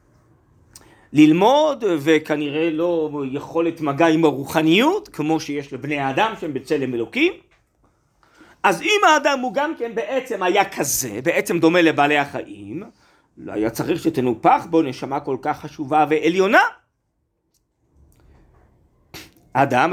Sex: male